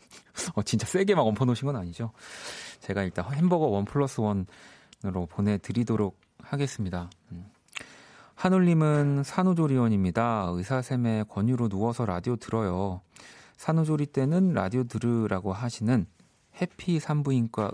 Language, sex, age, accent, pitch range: Korean, male, 40-59, native, 95-135 Hz